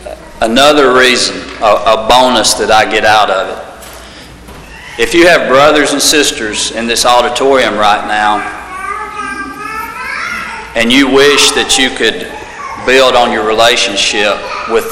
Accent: American